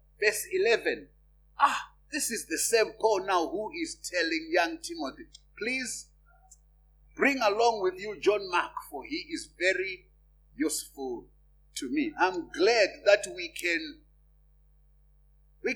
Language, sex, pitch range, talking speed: English, male, 200-335 Hz, 130 wpm